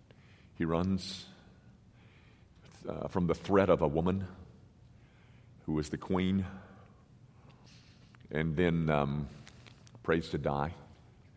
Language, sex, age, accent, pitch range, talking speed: English, male, 50-69, American, 100-160 Hz, 100 wpm